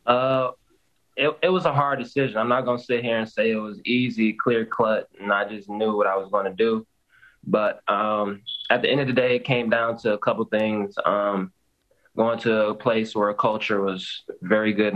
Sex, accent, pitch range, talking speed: male, American, 95-105 Hz, 215 wpm